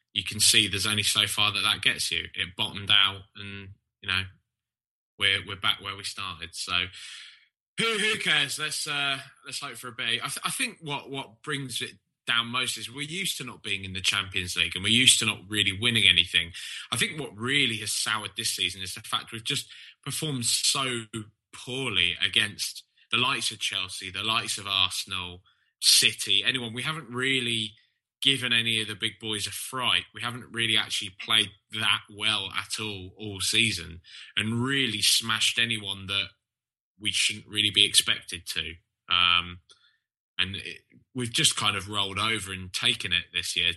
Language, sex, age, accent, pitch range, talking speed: English, male, 20-39, British, 95-125 Hz, 185 wpm